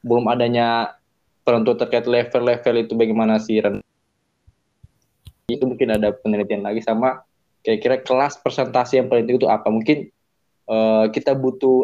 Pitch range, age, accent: 115-140 Hz, 20-39, native